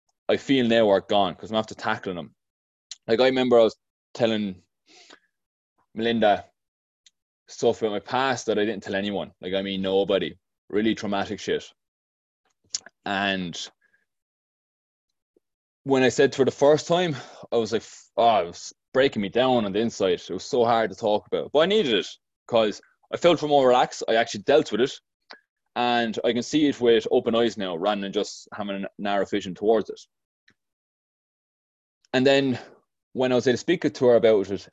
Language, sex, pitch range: English, male, 100-130 Hz